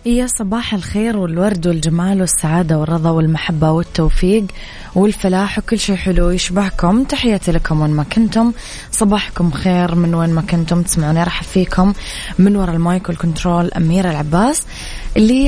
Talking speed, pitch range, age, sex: 135 wpm, 170-200 Hz, 20-39, female